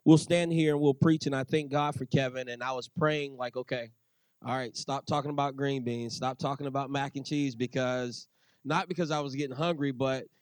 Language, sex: English, male